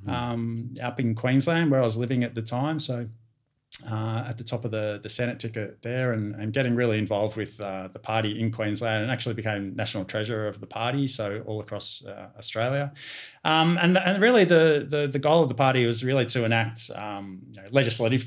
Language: English